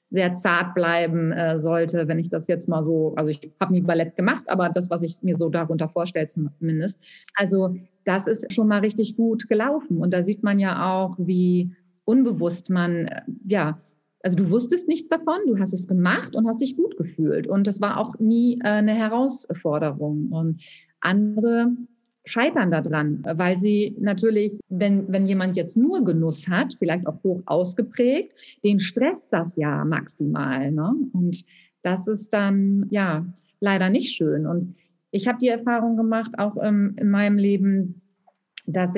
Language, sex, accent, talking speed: German, female, German, 170 wpm